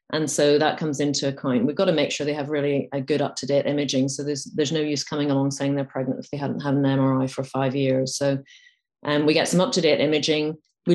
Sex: female